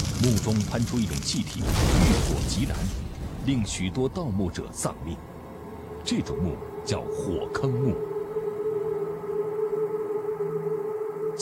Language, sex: Chinese, male